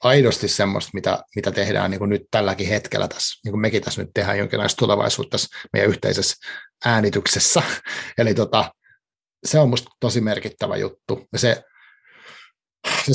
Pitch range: 105-130 Hz